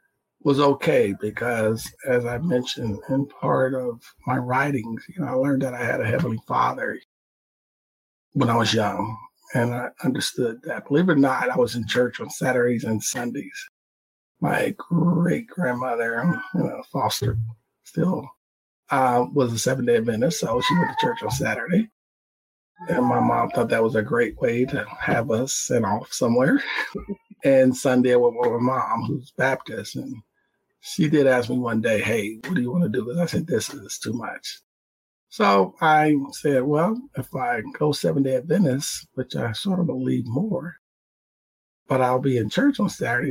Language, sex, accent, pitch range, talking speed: English, male, American, 120-170 Hz, 175 wpm